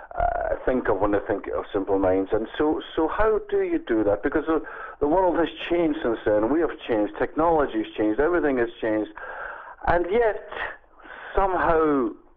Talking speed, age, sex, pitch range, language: 175 wpm, 50-69, male, 110-170 Hz, English